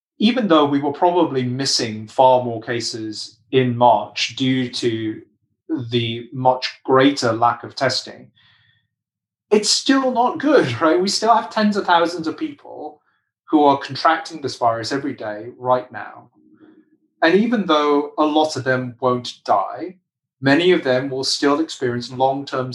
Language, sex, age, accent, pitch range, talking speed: English, male, 30-49, British, 125-195 Hz, 150 wpm